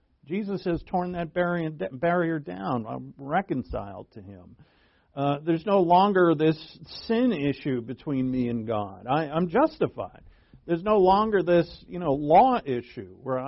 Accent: American